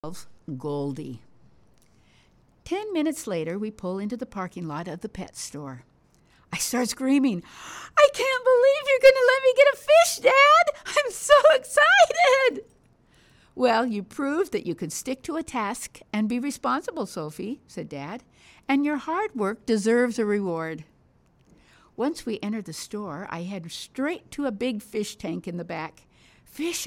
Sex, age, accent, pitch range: female, 60-79, American, 185-290 Hz